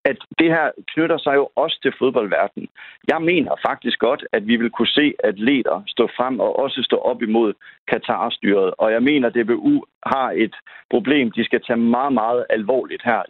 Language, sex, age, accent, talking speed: Danish, male, 60-79, native, 195 wpm